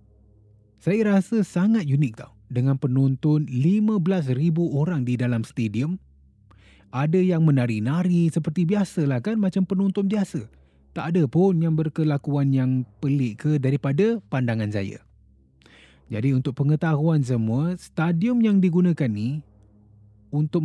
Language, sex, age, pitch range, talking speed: Malay, male, 30-49, 105-155 Hz, 120 wpm